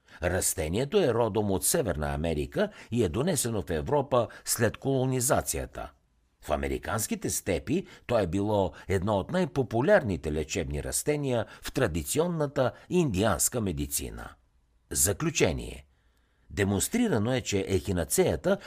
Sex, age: male, 60-79